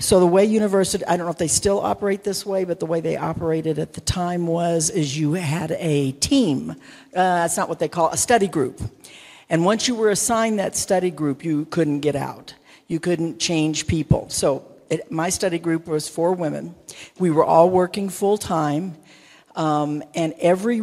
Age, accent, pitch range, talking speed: 60-79, American, 155-190 Hz, 200 wpm